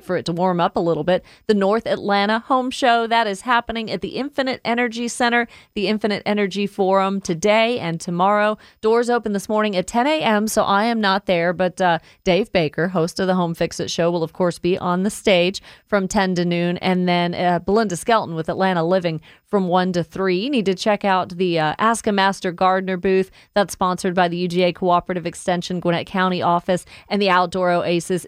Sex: female